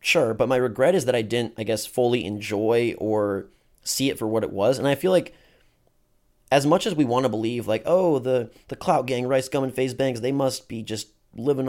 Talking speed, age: 235 wpm, 30-49